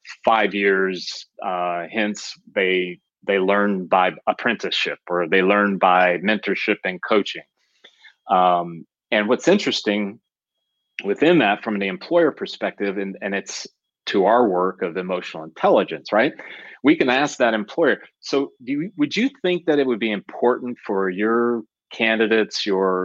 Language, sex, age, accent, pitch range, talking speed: English, male, 30-49, American, 95-115 Hz, 145 wpm